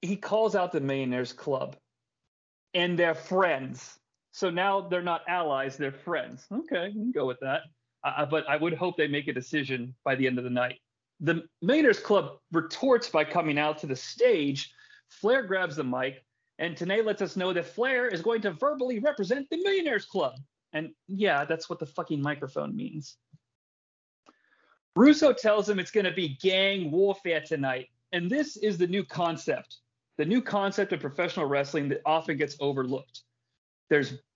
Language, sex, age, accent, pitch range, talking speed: English, male, 30-49, American, 145-215 Hz, 175 wpm